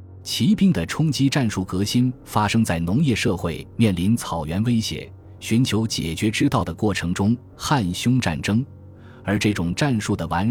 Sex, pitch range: male, 85-110 Hz